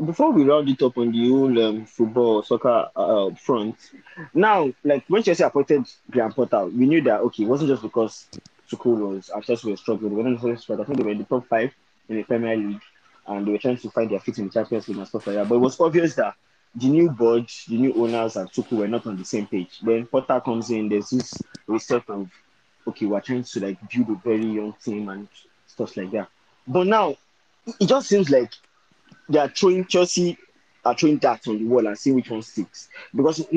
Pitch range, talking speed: 110-135 Hz, 230 wpm